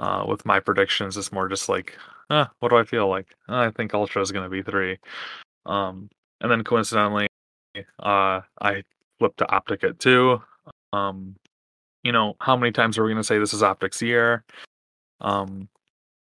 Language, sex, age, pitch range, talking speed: English, male, 20-39, 95-115 Hz, 185 wpm